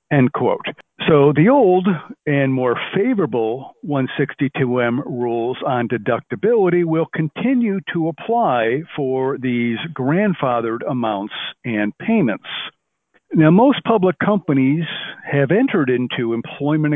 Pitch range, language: 125-170 Hz, English